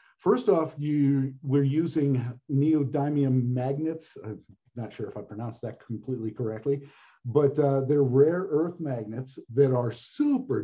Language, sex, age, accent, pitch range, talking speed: English, male, 50-69, American, 125-150 Hz, 140 wpm